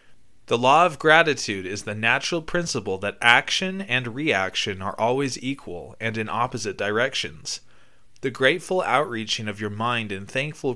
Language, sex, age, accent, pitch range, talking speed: English, male, 20-39, American, 110-150 Hz, 150 wpm